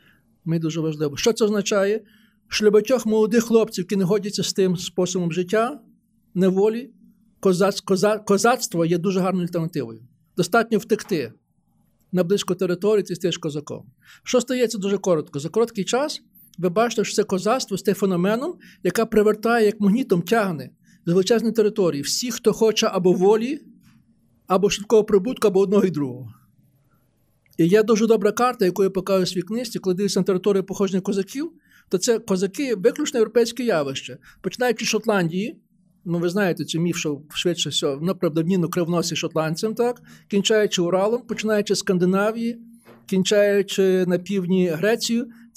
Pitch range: 175-220 Hz